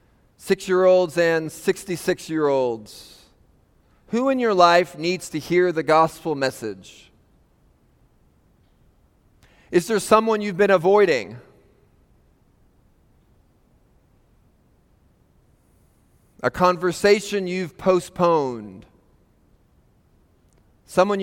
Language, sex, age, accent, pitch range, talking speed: English, male, 30-49, American, 150-195 Hz, 70 wpm